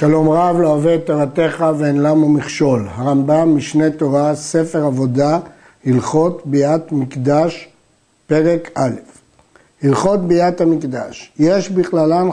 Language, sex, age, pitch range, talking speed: Hebrew, male, 60-79, 145-180 Hz, 110 wpm